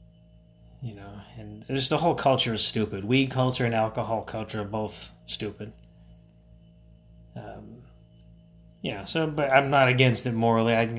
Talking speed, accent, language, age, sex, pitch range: 165 wpm, American, English, 30-49, male, 100-120 Hz